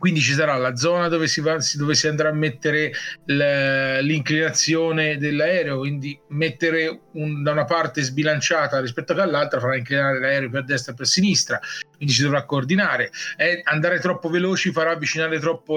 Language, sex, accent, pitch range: Italian, male, native, 140-160 Hz